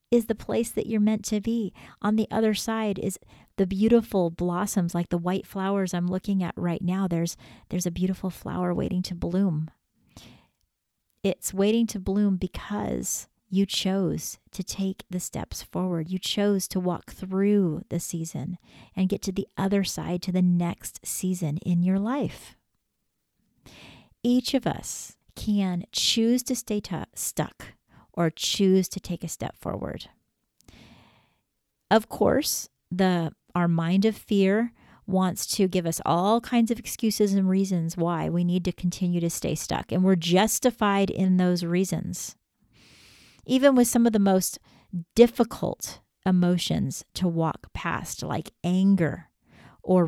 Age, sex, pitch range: 40-59, female, 175-205 Hz